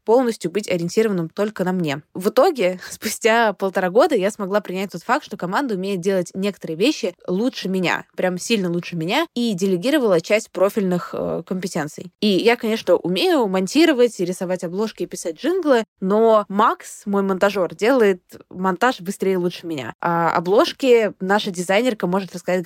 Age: 20-39